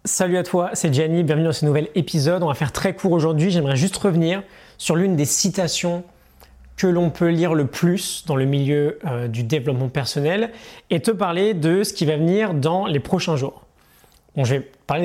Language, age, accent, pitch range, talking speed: French, 20-39, French, 135-175 Hz, 205 wpm